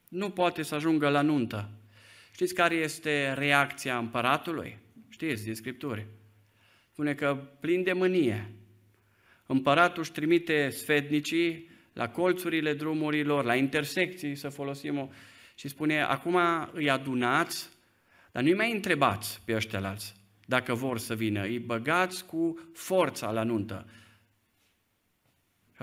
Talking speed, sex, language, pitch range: 125 wpm, male, Romanian, 125-175 Hz